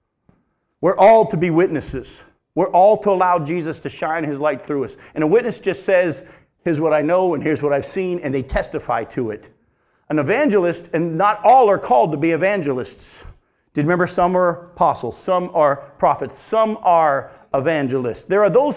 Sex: male